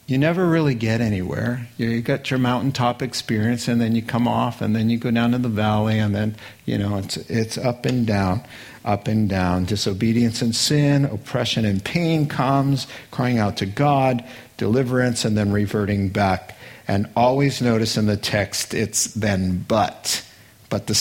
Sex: male